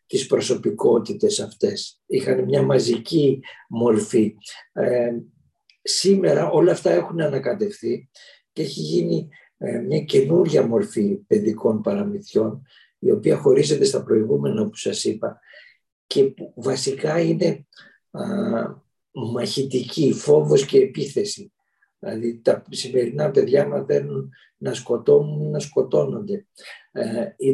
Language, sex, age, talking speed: Greek, male, 50-69, 100 wpm